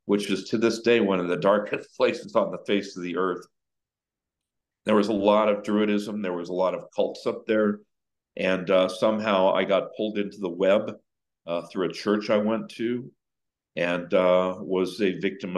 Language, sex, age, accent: English, male, 50-69, American